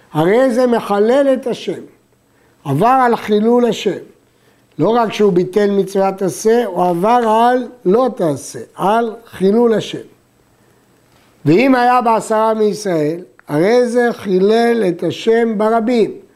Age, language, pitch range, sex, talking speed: 60-79, Hebrew, 185-235 Hz, male, 115 wpm